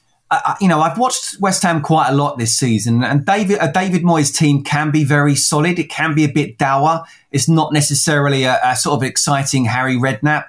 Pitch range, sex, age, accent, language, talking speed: 120-150 Hz, male, 20-39, British, English, 215 wpm